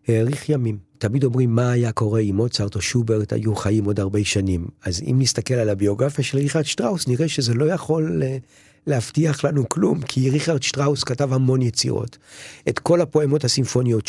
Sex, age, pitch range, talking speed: male, 50-69, 105-140 Hz, 175 wpm